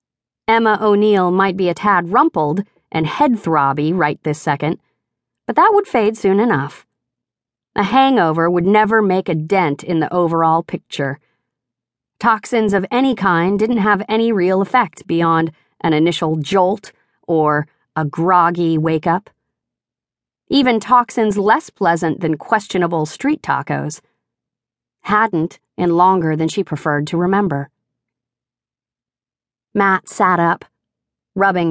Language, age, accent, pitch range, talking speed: English, 40-59, American, 150-205 Hz, 125 wpm